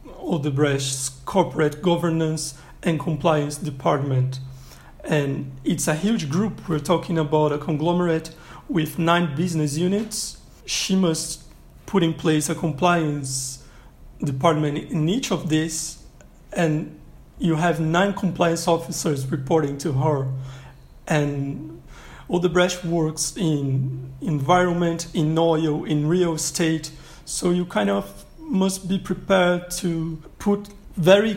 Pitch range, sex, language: 150-180 Hz, male, English